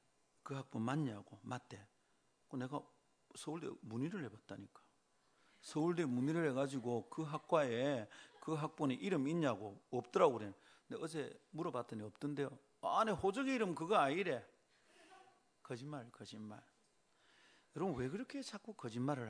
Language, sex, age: Korean, male, 40-59